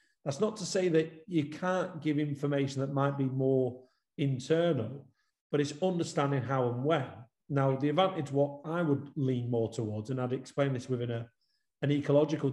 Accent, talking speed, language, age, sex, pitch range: British, 170 wpm, English, 40-59, male, 130-155 Hz